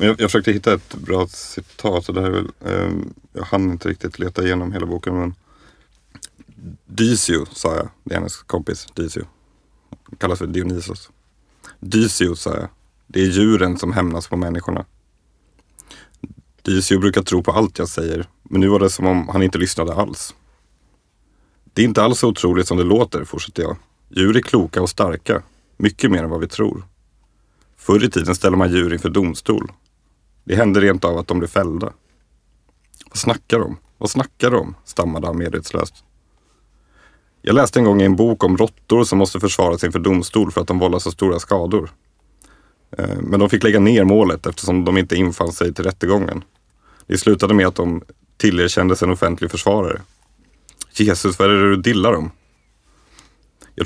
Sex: male